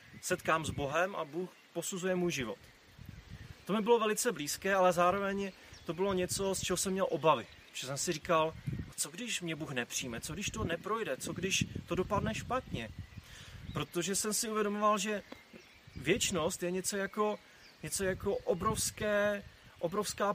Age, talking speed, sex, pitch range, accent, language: 30-49, 160 wpm, male, 145-190 Hz, native, Czech